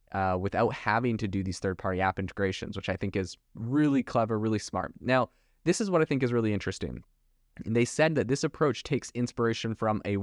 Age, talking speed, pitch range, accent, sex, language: 20-39, 205 wpm, 100-125 Hz, American, male, English